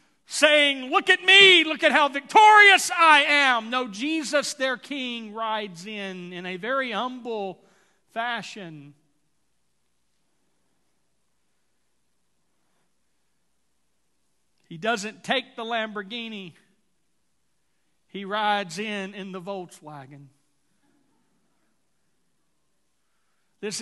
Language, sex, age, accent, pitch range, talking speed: English, male, 50-69, American, 170-240 Hz, 85 wpm